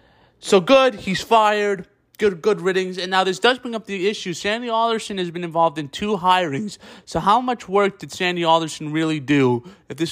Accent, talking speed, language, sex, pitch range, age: American, 200 wpm, English, male, 160-200 Hz, 20-39